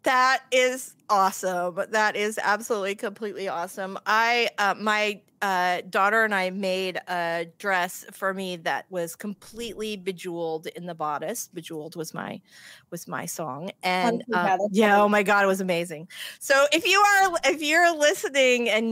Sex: female